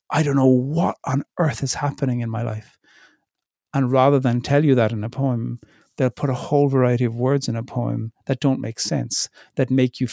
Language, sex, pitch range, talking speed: English, male, 115-135 Hz, 220 wpm